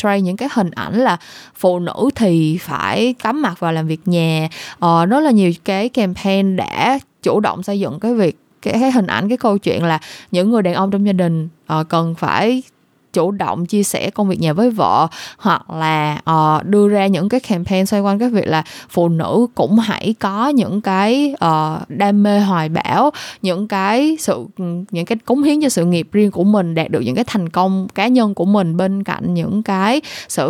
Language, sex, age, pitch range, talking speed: Vietnamese, female, 20-39, 175-225 Hz, 205 wpm